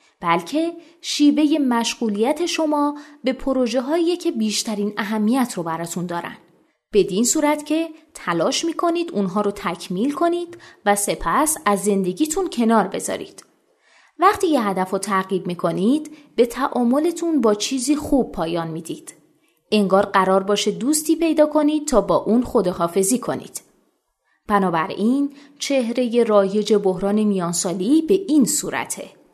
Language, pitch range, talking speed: Persian, 195-290 Hz, 130 wpm